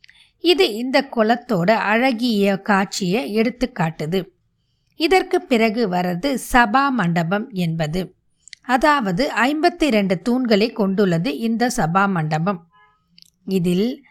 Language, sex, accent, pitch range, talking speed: Tamil, female, native, 195-280 Hz, 90 wpm